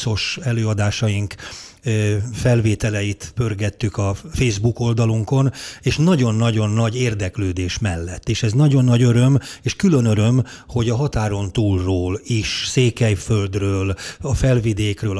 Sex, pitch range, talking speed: male, 100-125 Hz, 105 wpm